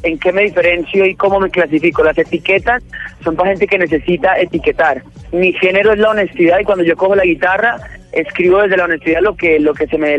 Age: 30-49